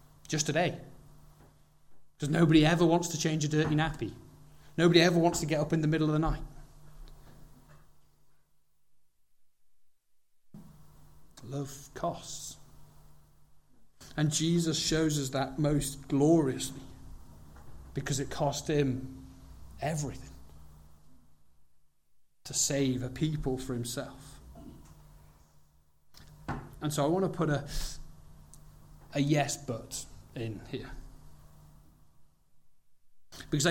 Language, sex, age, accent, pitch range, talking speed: English, male, 30-49, British, 130-170 Hz, 100 wpm